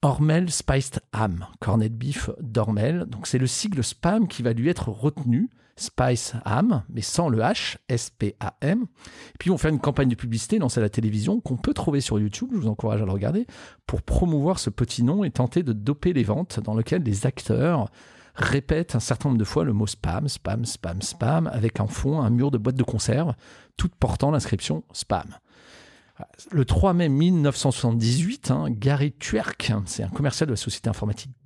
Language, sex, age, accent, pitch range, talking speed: French, male, 40-59, French, 115-155 Hz, 195 wpm